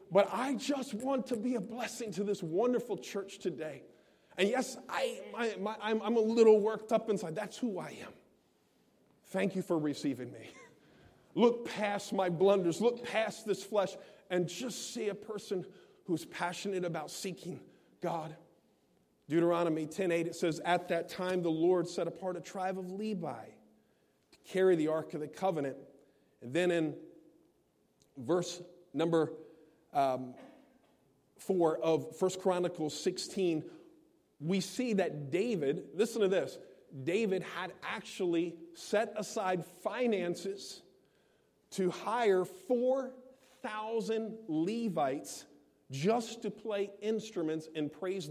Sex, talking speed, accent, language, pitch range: male, 135 wpm, American, English, 170-220 Hz